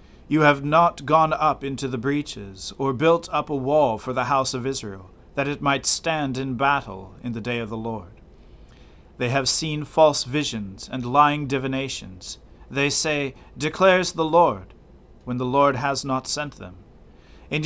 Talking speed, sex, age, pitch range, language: 175 wpm, male, 40-59, 115-150 Hz, English